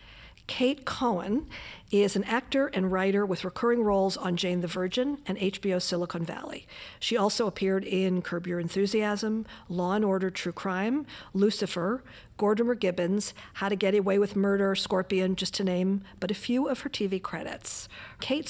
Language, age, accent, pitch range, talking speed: English, 50-69, American, 180-215 Hz, 165 wpm